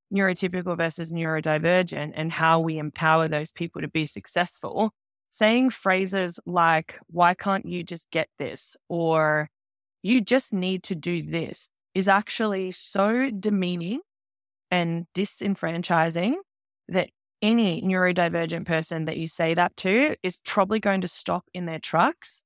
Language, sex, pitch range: English, female, 165-195 Hz